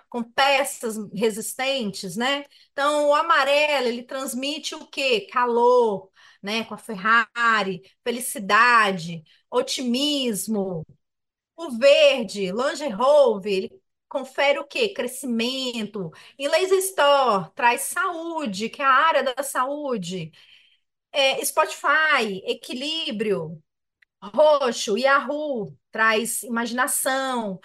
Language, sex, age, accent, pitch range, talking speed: Portuguese, female, 30-49, Brazilian, 215-280 Hz, 100 wpm